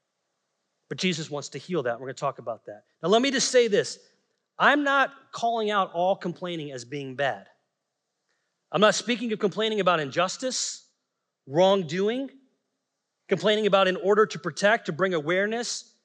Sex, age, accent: male, 30-49, American